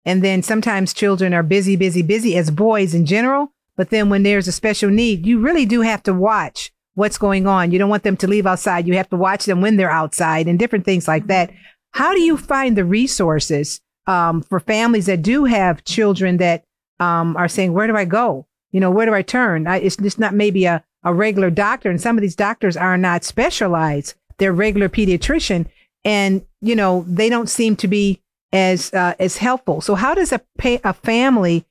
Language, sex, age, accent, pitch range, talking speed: English, female, 50-69, American, 175-210 Hz, 215 wpm